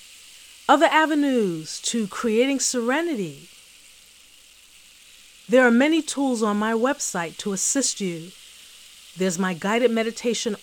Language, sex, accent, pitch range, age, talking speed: English, female, American, 170-235 Hz, 40-59, 105 wpm